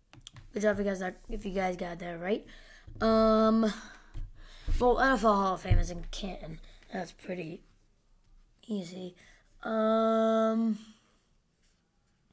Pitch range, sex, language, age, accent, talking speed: 185-230 Hz, female, English, 20-39, American, 120 wpm